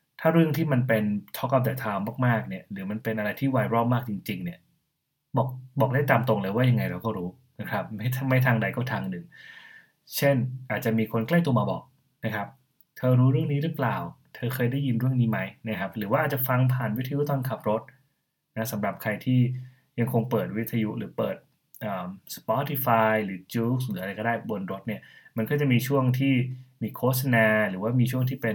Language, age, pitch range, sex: Thai, 20-39, 110-135 Hz, male